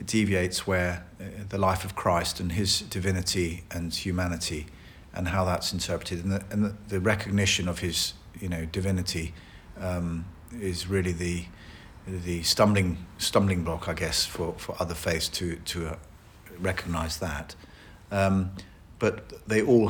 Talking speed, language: 150 wpm, English